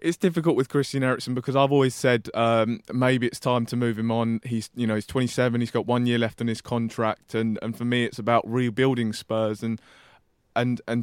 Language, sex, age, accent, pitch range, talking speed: English, male, 20-39, British, 110-125 Hz, 225 wpm